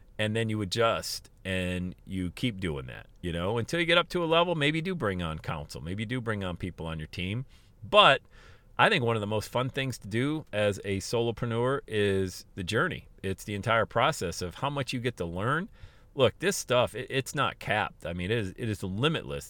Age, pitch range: 40-59, 90-125 Hz